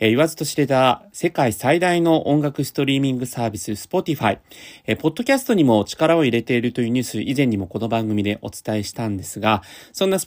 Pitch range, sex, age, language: 115-165 Hz, male, 30-49, Japanese